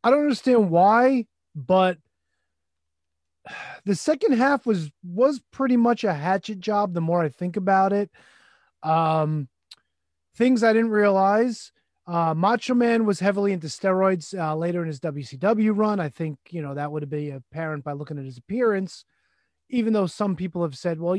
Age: 30-49